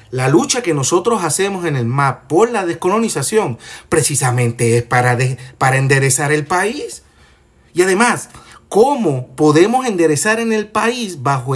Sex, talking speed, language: male, 145 wpm, Spanish